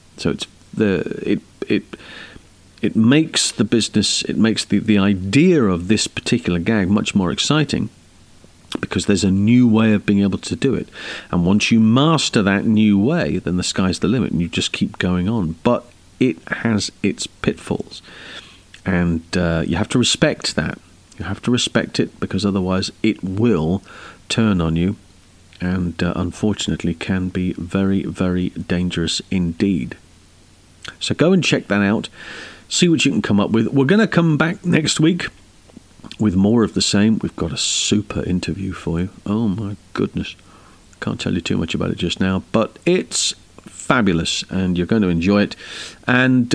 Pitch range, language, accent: 90-120 Hz, English, British